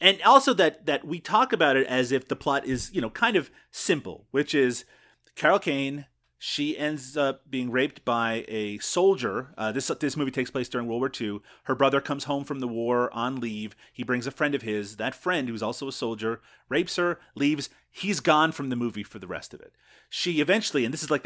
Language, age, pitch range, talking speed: English, 30-49, 115-145 Hz, 225 wpm